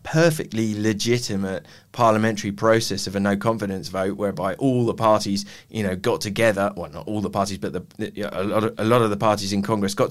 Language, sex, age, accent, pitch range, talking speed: Spanish, male, 20-39, British, 100-115 Hz, 220 wpm